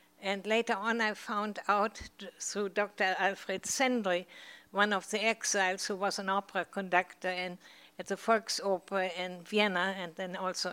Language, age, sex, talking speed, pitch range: English, 60-79, female, 150 wpm, 185-215 Hz